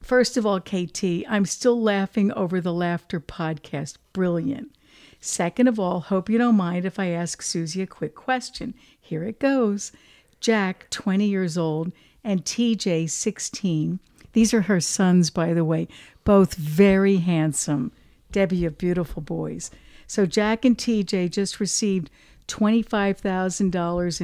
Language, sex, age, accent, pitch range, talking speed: English, female, 60-79, American, 170-205 Hz, 140 wpm